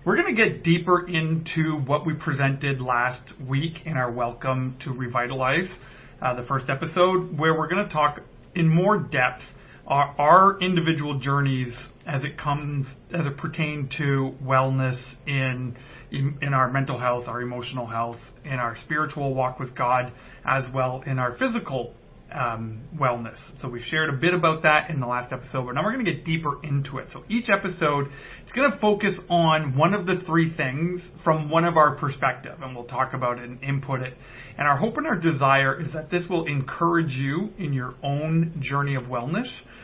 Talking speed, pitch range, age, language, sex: 190 wpm, 130-165 Hz, 30-49, English, male